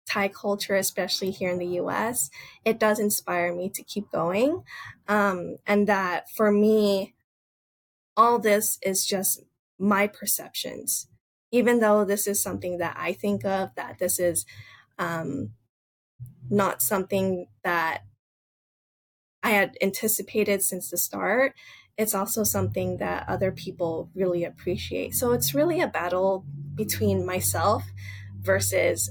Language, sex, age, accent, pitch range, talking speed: English, female, 10-29, American, 180-220 Hz, 130 wpm